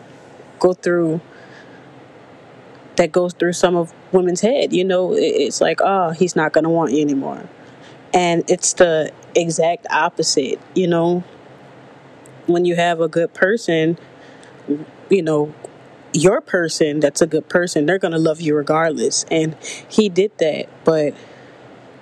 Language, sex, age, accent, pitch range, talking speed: English, female, 20-39, American, 165-195 Hz, 140 wpm